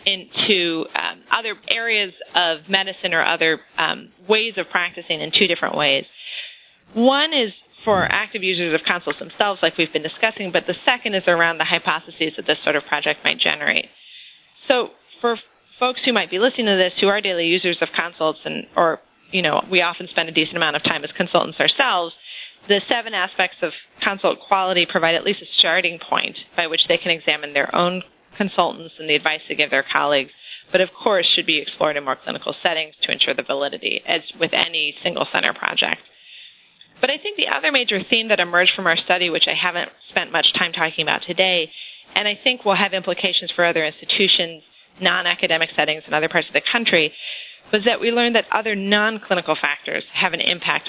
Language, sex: English, female